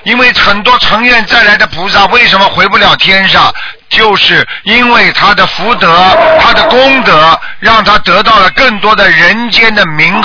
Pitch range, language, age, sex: 190-235 Hz, Chinese, 50-69, male